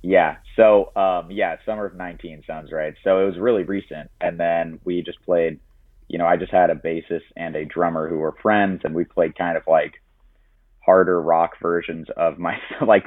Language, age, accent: English, 30-49, American